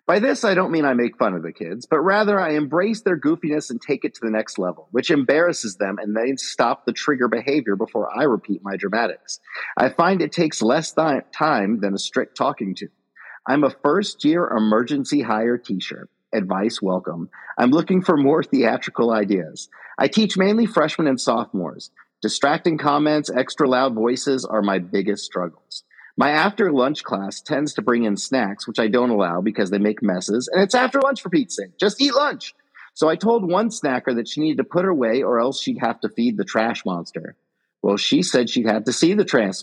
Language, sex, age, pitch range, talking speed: English, male, 40-59, 115-190 Hz, 205 wpm